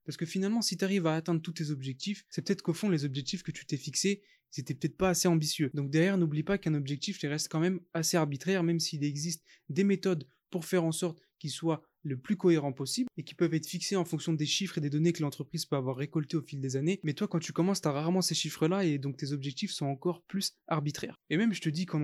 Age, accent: 20-39, French